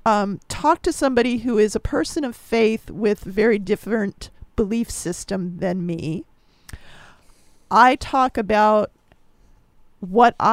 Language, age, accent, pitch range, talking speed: English, 40-59, American, 190-240 Hz, 120 wpm